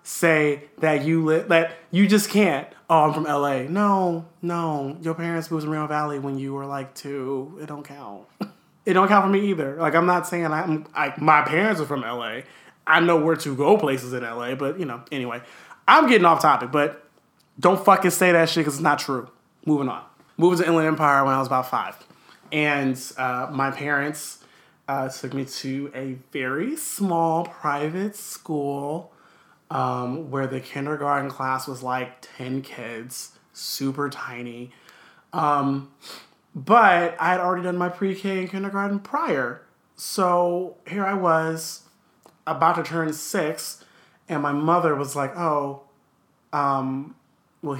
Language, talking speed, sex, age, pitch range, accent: English, 165 wpm, male, 20-39, 135-165 Hz, American